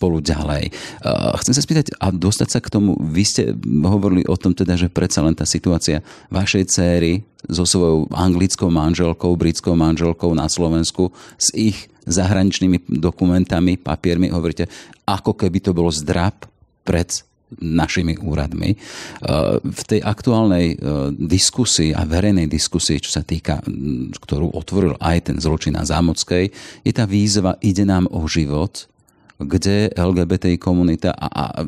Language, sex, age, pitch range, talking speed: Slovak, male, 40-59, 85-95 Hz, 135 wpm